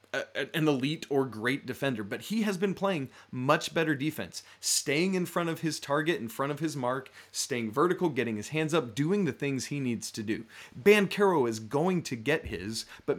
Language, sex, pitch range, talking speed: English, male, 115-160 Hz, 200 wpm